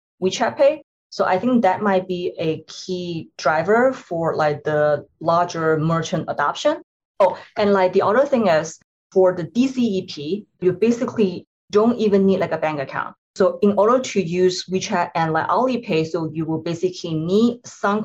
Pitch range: 165-205 Hz